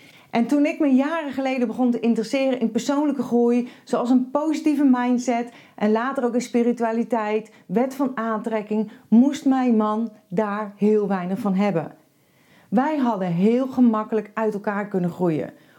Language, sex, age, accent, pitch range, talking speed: Dutch, female, 40-59, Dutch, 210-255 Hz, 150 wpm